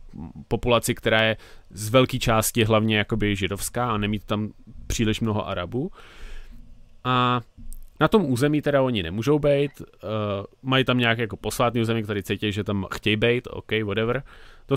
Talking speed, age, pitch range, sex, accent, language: 155 wpm, 30-49, 110-135 Hz, male, native, Czech